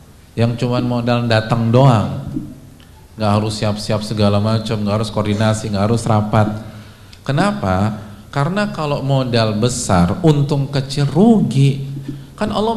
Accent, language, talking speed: native, Indonesian, 120 wpm